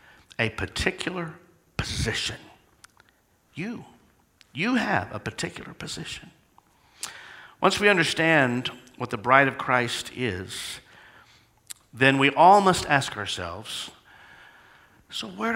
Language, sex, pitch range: English, male, 125-190 Hz